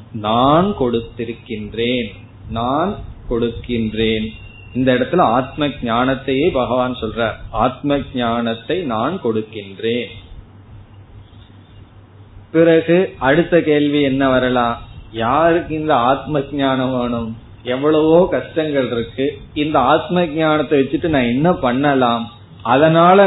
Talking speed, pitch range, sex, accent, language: 90 wpm, 115-145 Hz, male, native, Tamil